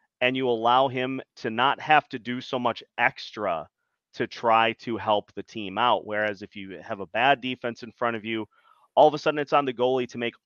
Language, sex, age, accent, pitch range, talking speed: English, male, 30-49, American, 110-140 Hz, 230 wpm